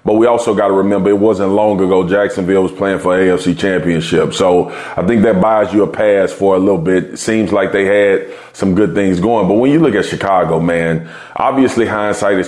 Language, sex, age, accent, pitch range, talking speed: English, male, 30-49, American, 100-135 Hz, 215 wpm